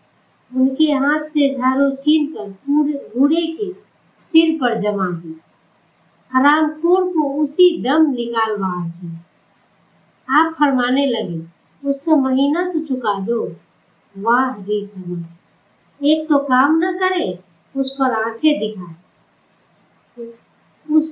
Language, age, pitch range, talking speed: Hindi, 50-69, 210-295 Hz, 95 wpm